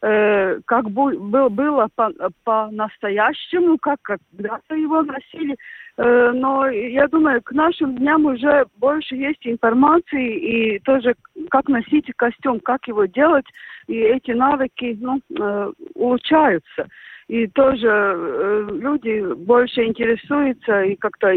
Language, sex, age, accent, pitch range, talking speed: Russian, female, 50-69, native, 200-275 Hz, 100 wpm